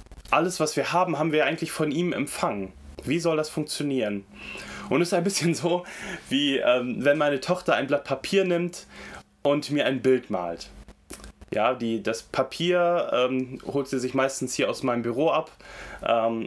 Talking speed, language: 175 wpm, German